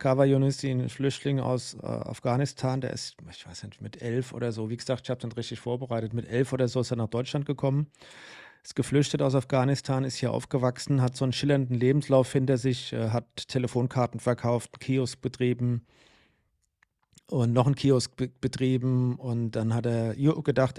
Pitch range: 125-140 Hz